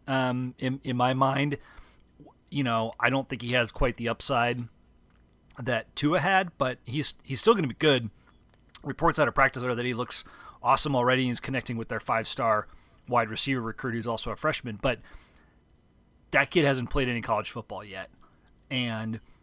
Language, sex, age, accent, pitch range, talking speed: English, male, 30-49, American, 115-135 Hz, 180 wpm